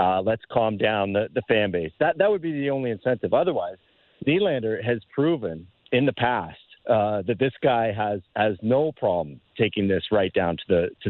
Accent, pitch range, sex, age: American, 115-155 Hz, male, 40-59